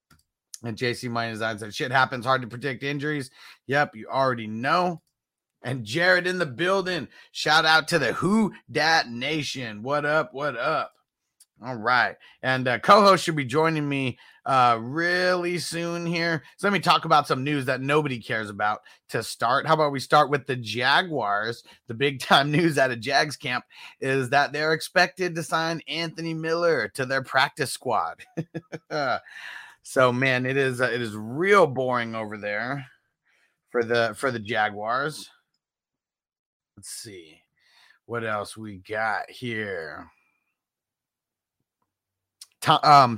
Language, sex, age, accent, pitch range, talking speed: English, male, 30-49, American, 115-160 Hz, 150 wpm